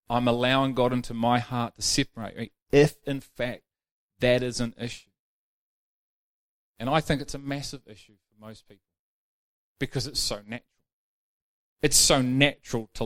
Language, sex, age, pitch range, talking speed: English, male, 30-49, 95-140 Hz, 155 wpm